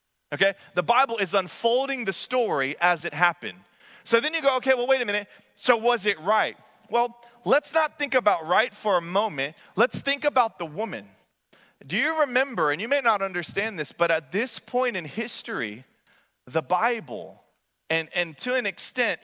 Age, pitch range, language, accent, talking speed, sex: 30-49, 190-255 Hz, English, American, 185 wpm, male